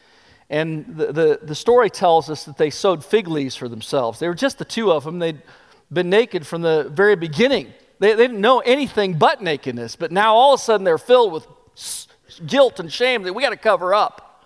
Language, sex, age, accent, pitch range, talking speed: English, male, 40-59, American, 145-205 Hz, 220 wpm